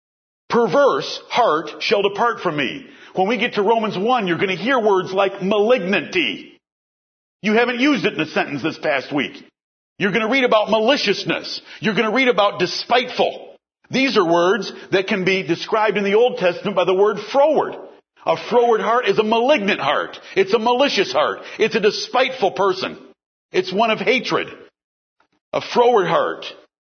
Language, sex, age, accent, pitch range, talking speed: English, male, 50-69, American, 195-260 Hz, 175 wpm